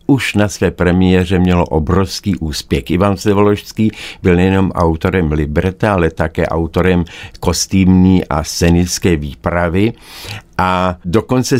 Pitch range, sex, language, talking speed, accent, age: 90-105 Hz, male, Czech, 115 wpm, native, 60-79